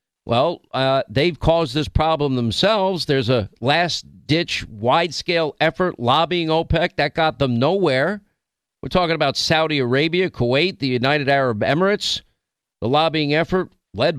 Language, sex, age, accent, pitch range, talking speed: English, male, 50-69, American, 130-170 Hz, 135 wpm